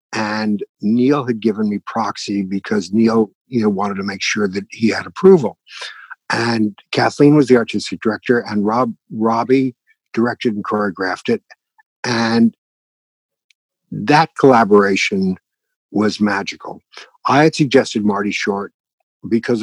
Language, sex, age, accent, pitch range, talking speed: English, male, 60-79, American, 105-140 Hz, 130 wpm